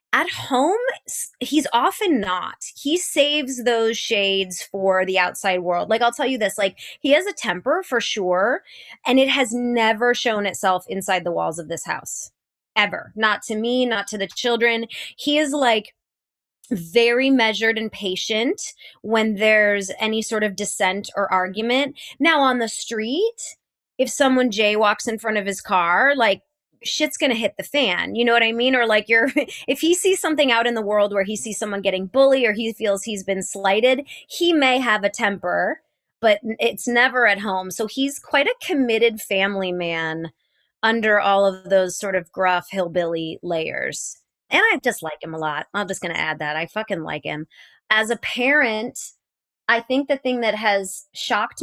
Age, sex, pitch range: 20-39, female, 195-255 Hz